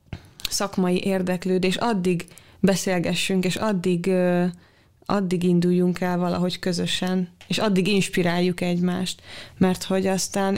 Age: 20-39